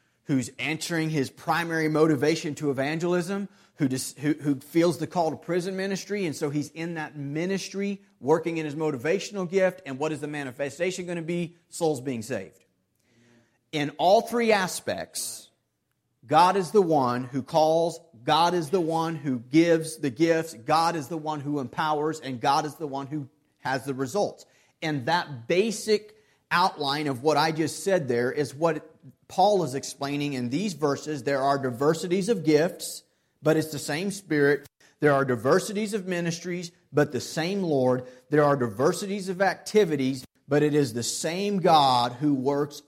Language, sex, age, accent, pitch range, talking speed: English, male, 40-59, American, 135-175 Hz, 170 wpm